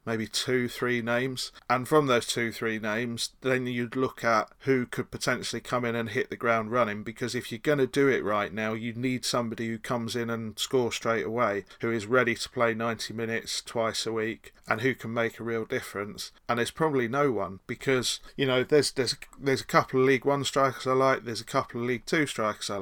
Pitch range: 115-130 Hz